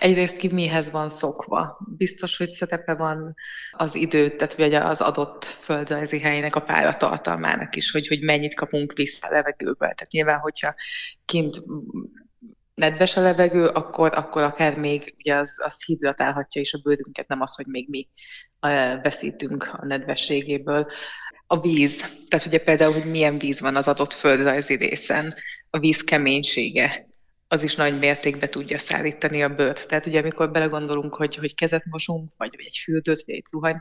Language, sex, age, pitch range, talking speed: Hungarian, female, 20-39, 145-170 Hz, 160 wpm